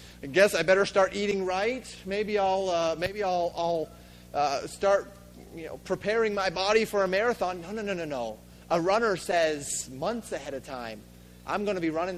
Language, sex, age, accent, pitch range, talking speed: English, male, 30-49, American, 145-205 Hz, 195 wpm